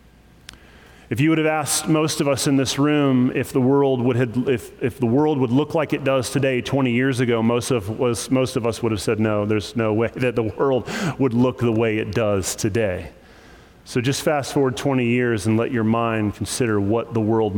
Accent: American